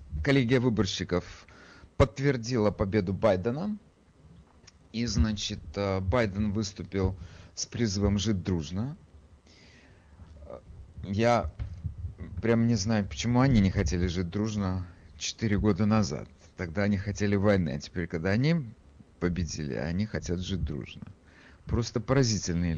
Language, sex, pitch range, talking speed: Russian, male, 90-125 Hz, 110 wpm